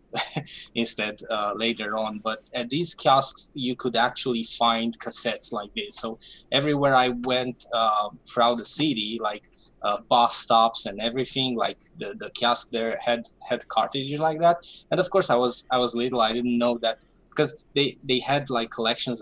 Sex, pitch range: male, 115-130 Hz